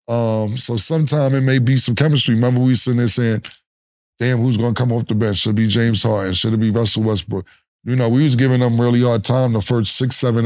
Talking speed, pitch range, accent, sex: 260 wpm, 115-145 Hz, American, male